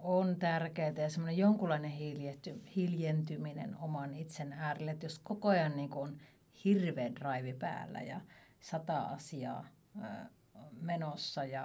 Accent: native